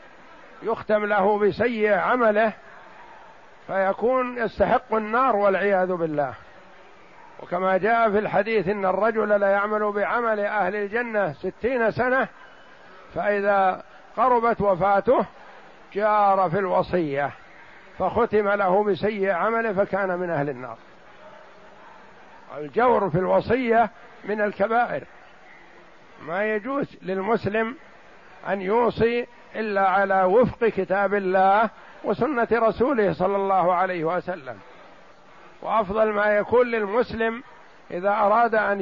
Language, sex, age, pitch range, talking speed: Arabic, male, 60-79, 190-225 Hz, 100 wpm